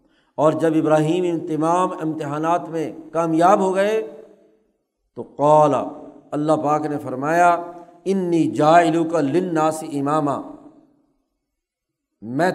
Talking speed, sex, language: 105 wpm, male, Urdu